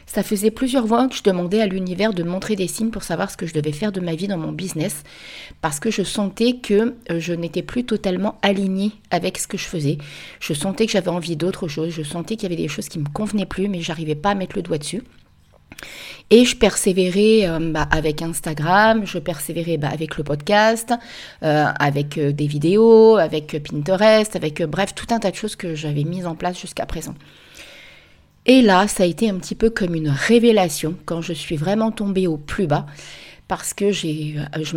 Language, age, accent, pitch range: French, 30-49, French, 155-200 Hz